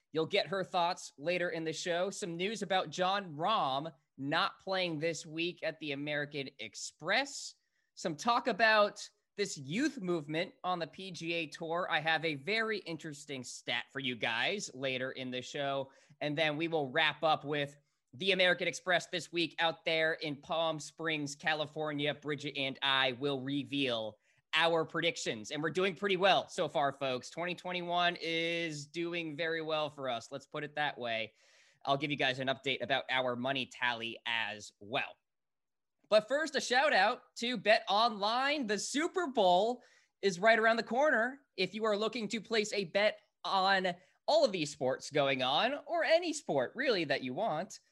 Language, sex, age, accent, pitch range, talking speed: English, male, 20-39, American, 145-200 Hz, 175 wpm